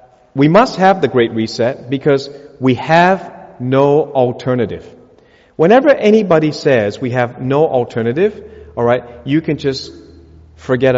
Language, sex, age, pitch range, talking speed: English, male, 40-59, 125-185 Hz, 130 wpm